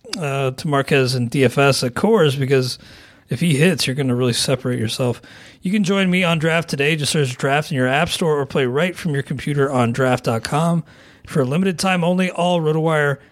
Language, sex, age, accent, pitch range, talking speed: English, male, 40-59, American, 135-175 Hz, 205 wpm